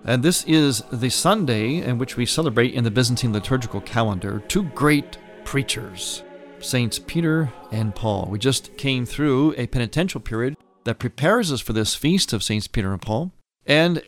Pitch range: 110-145 Hz